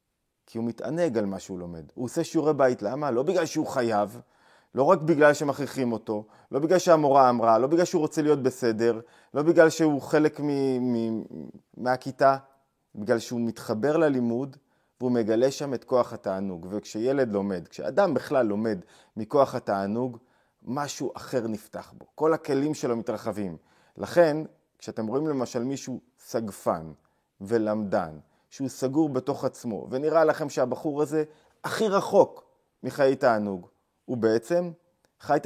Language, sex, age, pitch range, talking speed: Hebrew, male, 30-49, 115-145 Hz, 145 wpm